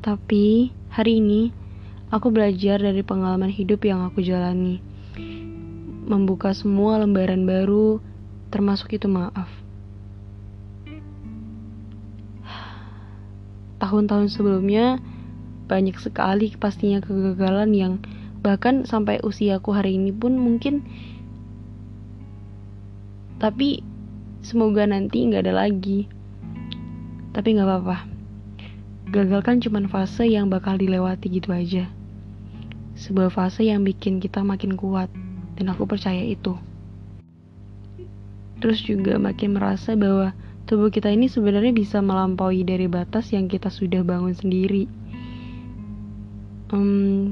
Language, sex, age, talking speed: Indonesian, female, 20-39, 100 wpm